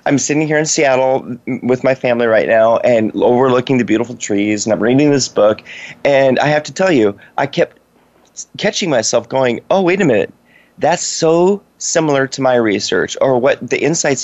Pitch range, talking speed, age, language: 115-140 Hz, 190 wpm, 30-49, English